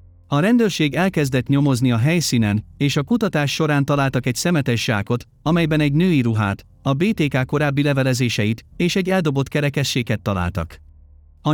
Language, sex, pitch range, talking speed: Hungarian, male, 110-160 Hz, 140 wpm